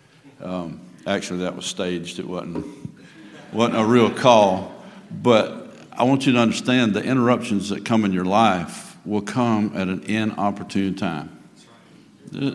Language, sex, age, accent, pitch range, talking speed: English, male, 50-69, American, 95-115 Hz, 150 wpm